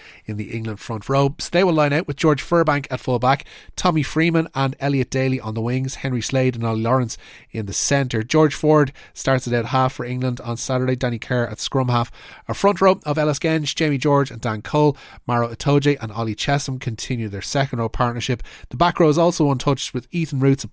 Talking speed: 225 wpm